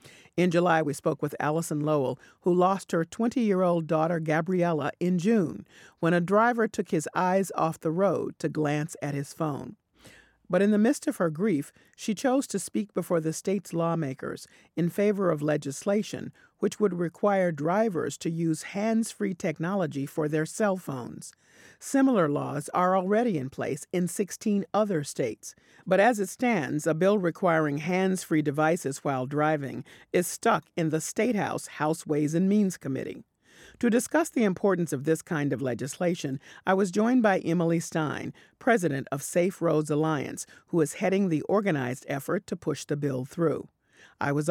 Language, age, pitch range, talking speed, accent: English, 40-59, 150-195 Hz, 170 wpm, American